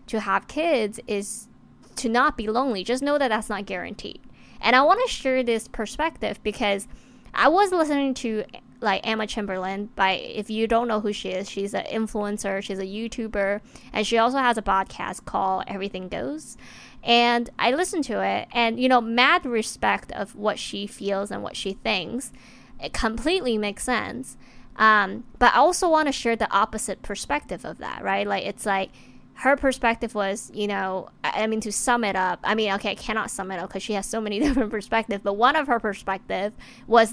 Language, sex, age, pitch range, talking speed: English, female, 20-39, 200-240 Hz, 195 wpm